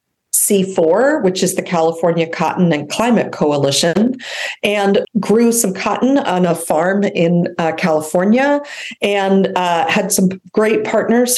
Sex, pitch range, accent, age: female, 165-200 Hz, American, 40-59